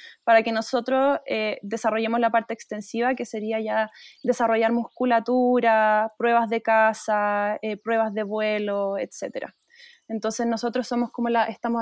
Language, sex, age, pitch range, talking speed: Spanish, female, 20-39, 220-255 Hz, 120 wpm